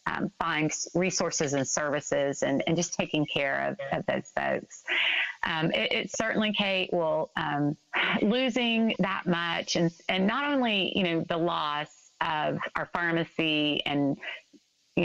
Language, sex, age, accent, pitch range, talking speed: English, female, 30-49, American, 150-190 Hz, 150 wpm